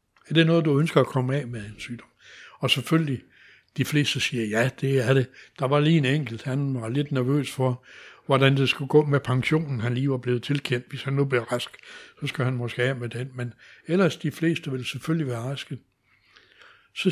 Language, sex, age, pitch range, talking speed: Danish, male, 60-79, 120-155 Hz, 215 wpm